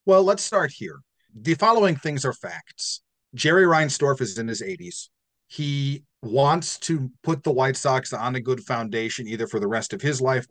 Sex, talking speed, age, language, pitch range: male, 190 wpm, 40-59, English, 120-155 Hz